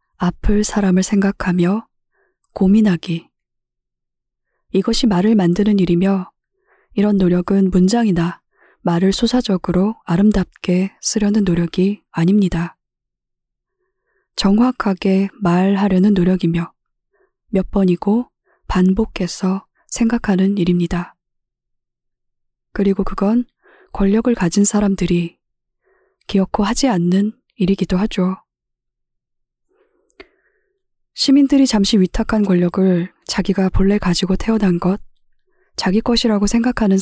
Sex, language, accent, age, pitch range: female, Korean, native, 20-39, 185-230 Hz